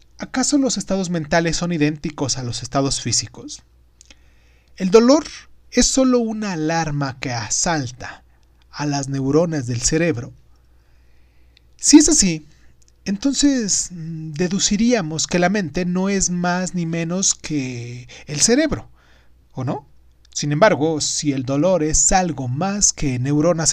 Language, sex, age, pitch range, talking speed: Spanish, male, 40-59, 120-180 Hz, 130 wpm